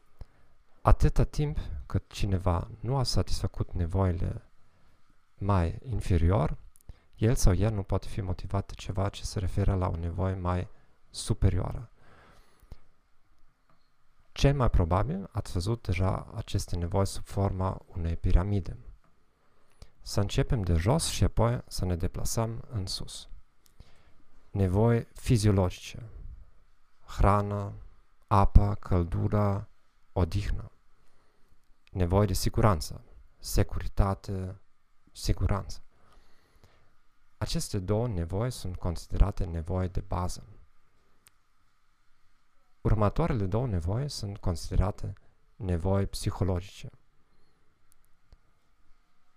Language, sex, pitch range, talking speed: English, male, 90-105 Hz, 90 wpm